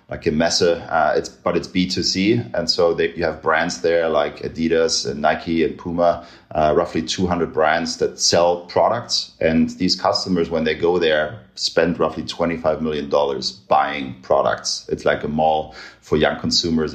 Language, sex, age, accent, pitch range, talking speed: German, male, 30-49, German, 80-95 Hz, 170 wpm